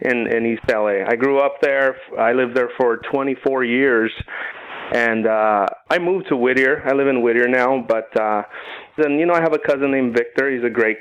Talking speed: 215 wpm